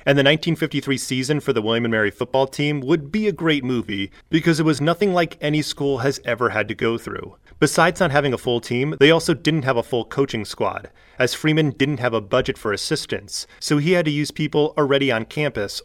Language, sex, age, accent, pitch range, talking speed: English, male, 30-49, American, 125-155 Hz, 225 wpm